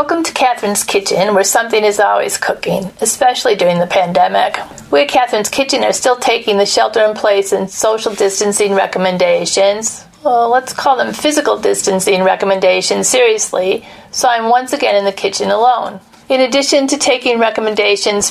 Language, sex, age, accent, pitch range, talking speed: English, female, 40-59, American, 195-235 Hz, 150 wpm